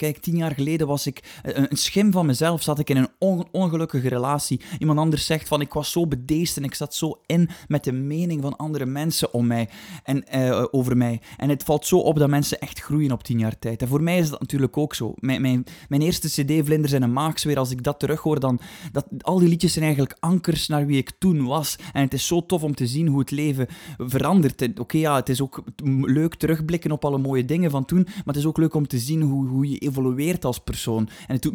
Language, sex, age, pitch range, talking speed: Dutch, male, 20-39, 130-160 Hz, 250 wpm